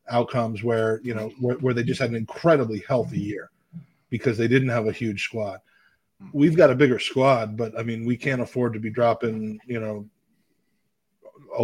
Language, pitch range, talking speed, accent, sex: English, 115-150 Hz, 190 wpm, American, male